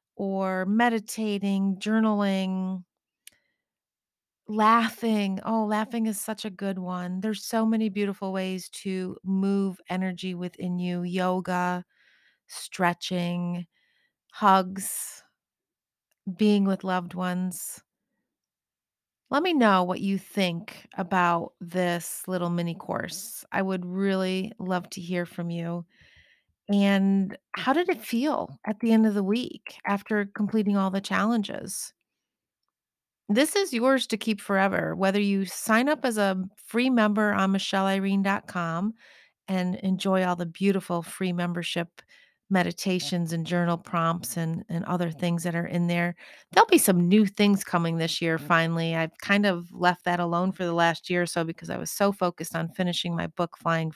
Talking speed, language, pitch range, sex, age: 145 wpm, English, 175-210 Hz, female, 30-49